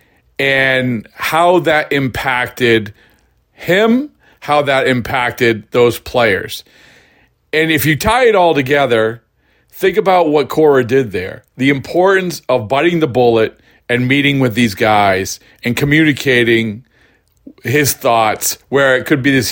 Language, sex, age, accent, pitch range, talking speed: English, male, 40-59, American, 120-155 Hz, 130 wpm